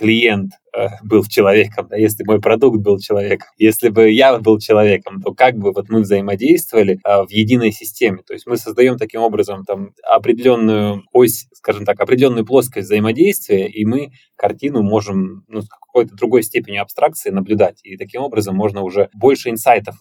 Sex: male